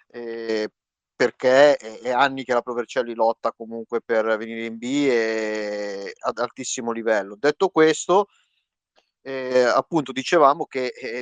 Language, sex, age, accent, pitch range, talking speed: Italian, male, 30-49, native, 125-150 Hz, 130 wpm